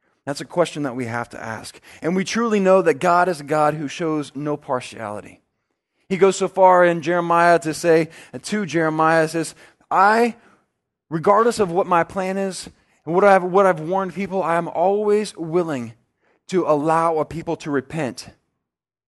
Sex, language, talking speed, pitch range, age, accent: male, English, 180 wpm, 140-185 Hz, 20-39, American